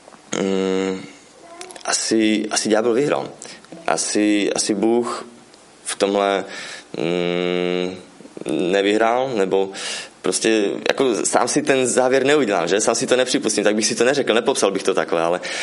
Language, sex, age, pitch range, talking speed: Czech, male, 20-39, 95-110 Hz, 130 wpm